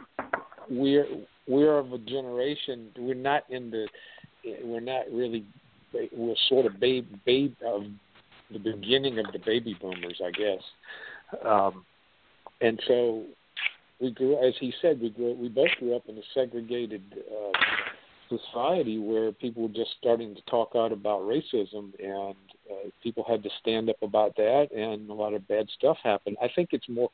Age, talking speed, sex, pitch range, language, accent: 50-69, 165 wpm, male, 105-125 Hz, English, American